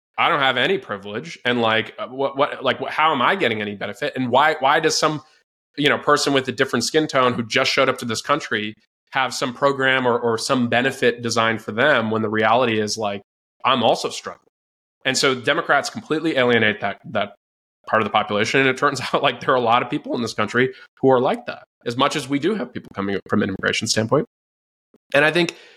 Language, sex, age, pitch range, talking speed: English, male, 20-39, 110-155 Hz, 230 wpm